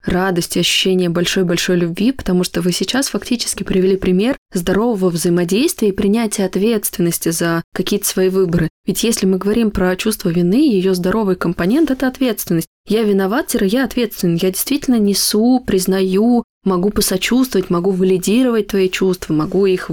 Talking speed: 150 wpm